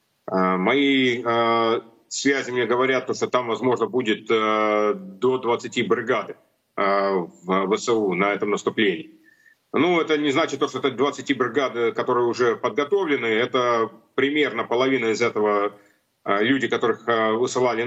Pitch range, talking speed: 115-150 Hz, 120 wpm